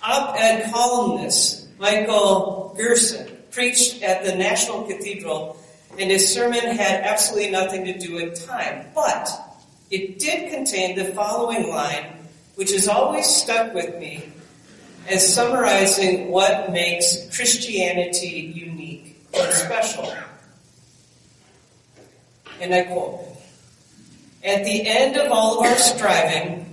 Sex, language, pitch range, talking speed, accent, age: female, English, 170-225 Hz, 115 wpm, American, 40-59